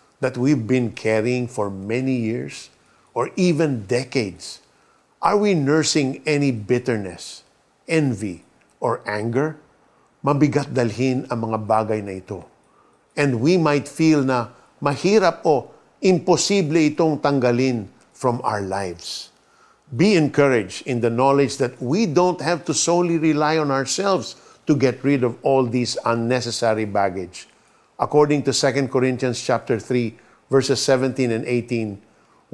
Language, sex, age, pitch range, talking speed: Filipino, male, 50-69, 115-145 Hz, 125 wpm